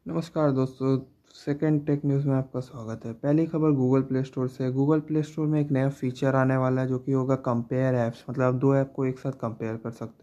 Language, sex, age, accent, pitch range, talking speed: Hindi, male, 20-39, native, 125-145 Hz, 240 wpm